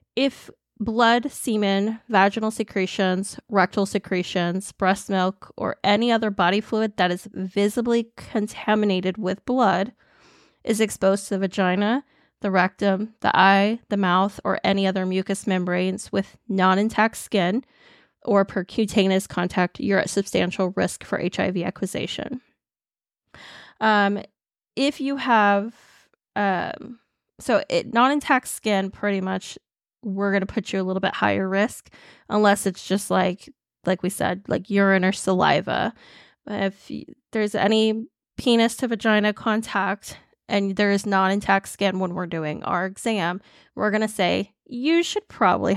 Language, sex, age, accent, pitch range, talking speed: English, female, 20-39, American, 190-225 Hz, 140 wpm